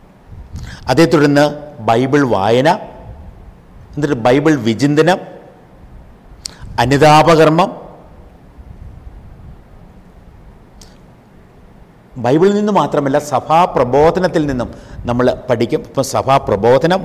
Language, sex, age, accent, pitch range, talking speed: Malayalam, male, 50-69, native, 110-155 Hz, 60 wpm